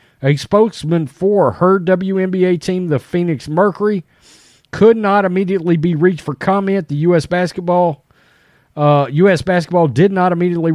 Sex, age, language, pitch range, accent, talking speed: male, 40-59, English, 140-185 Hz, American, 140 wpm